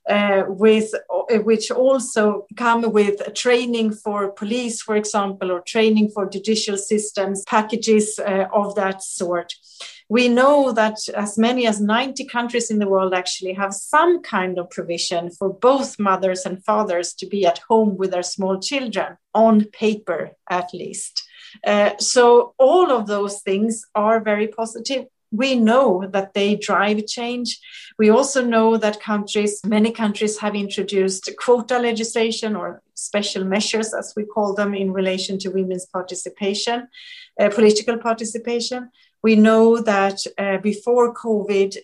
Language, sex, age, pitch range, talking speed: English, female, 30-49, 195-235 Hz, 145 wpm